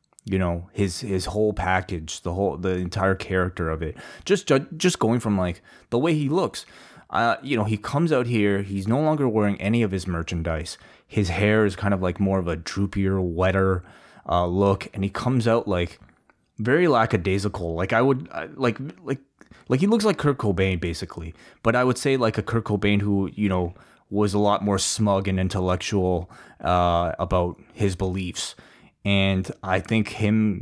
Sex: male